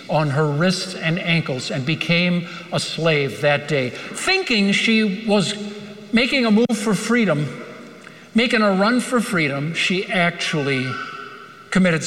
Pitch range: 150-200 Hz